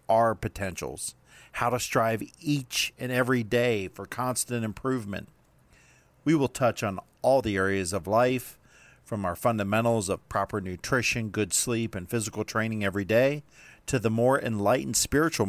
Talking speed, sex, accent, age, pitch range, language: 150 wpm, male, American, 50-69, 105-125 Hz, English